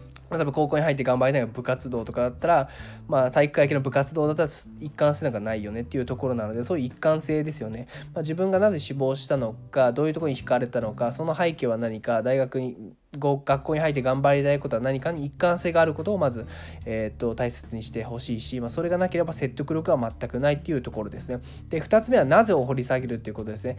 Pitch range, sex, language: 120-155 Hz, male, Japanese